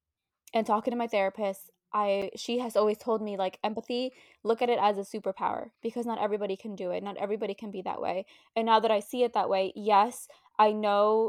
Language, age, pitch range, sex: English, 10-29, 195-230 Hz, female